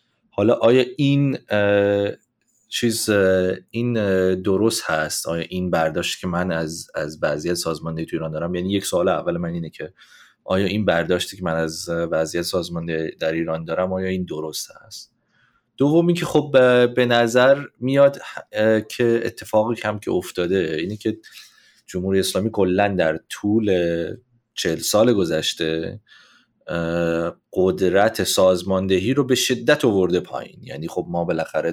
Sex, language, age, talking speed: male, Persian, 30-49, 140 wpm